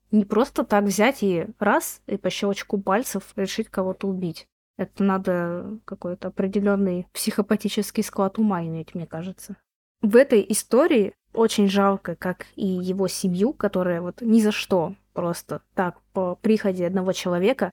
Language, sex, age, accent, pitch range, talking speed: Russian, female, 20-39, native, 185-215 Hz, 145 wpm